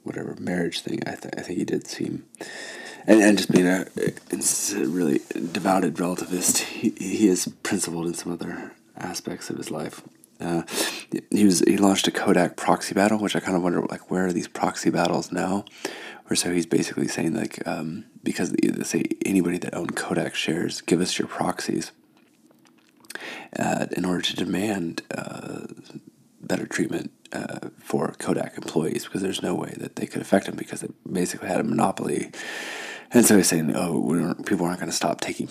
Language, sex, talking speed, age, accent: English, male, 180 wpm, 30-49, American